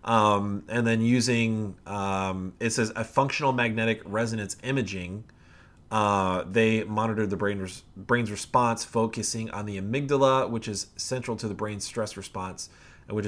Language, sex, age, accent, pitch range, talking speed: English, male, 30-49, American, 95-120 Hz, 140 wpm